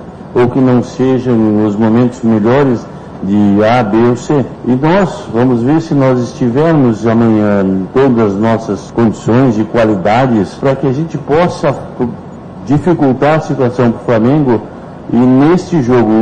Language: Portuguese